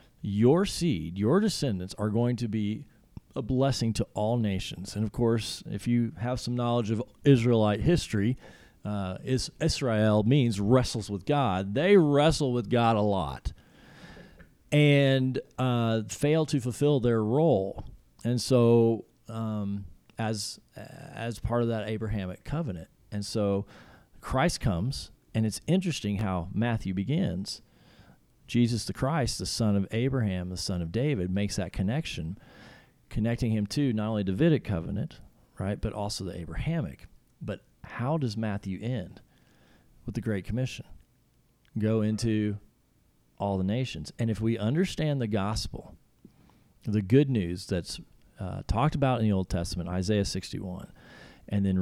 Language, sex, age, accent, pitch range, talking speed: English, male, 40-59, American, 100-130 Hz, 145 wpm